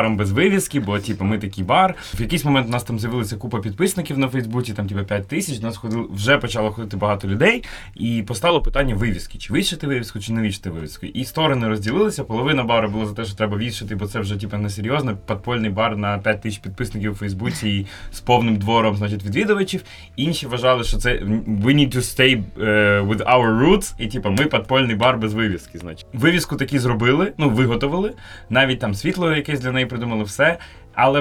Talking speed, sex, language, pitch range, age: 200 wpm, male, Ukrainian, 110-140 Hz, 20-39